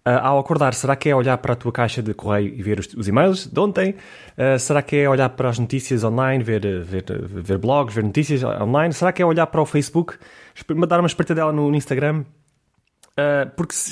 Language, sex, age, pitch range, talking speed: Portuguese, male, 20-39, 120-150 Hz, 235 wpm